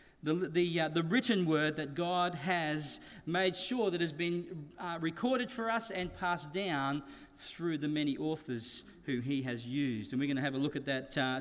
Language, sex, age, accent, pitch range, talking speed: English, male, 40-59, Australian, 150-200 Hz, 205 wpm